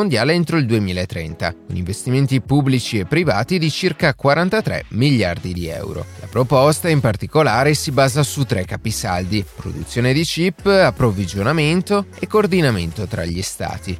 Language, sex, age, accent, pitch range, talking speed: Italian, male, 30-49, native, 100-155 Hz, 135 wpm